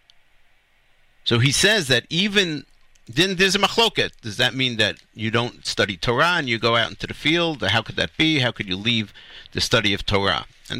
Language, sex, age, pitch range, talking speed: English, male, 50-69, 120-175 Hz, 205 wpm